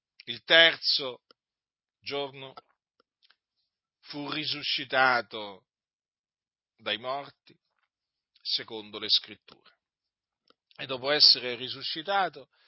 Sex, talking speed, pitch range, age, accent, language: male, 65 wpm, 115-160 Hz, 50-69, native, Italian